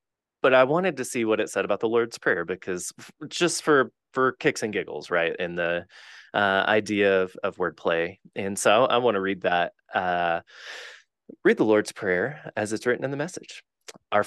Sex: male